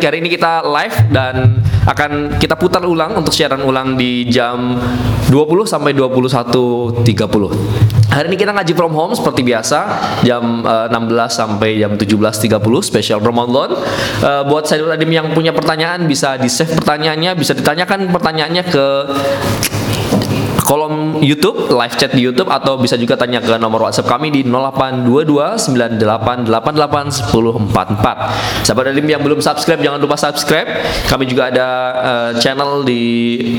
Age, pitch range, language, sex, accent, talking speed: 20-39, 120-155 Hz, Indonesian, male, native, 130 wpm